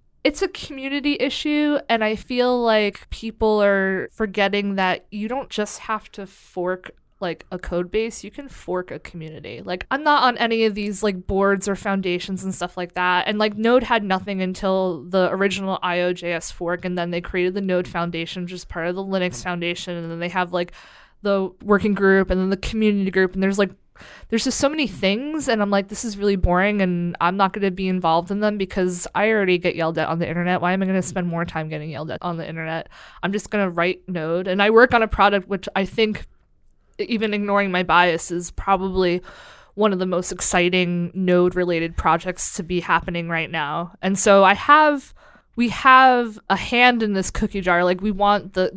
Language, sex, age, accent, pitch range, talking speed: English, female, 20-39, American, 180-210 Hz, 215 wpm